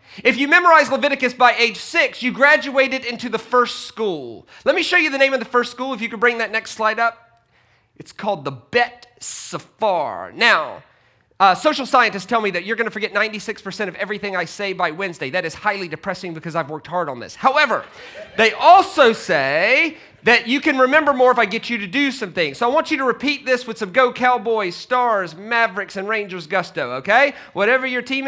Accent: American